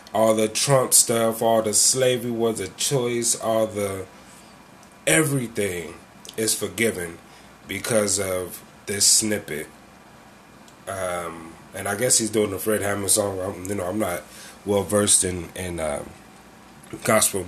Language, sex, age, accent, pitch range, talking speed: English, male, 20-39, American, 95-120 Hz, 135 wpm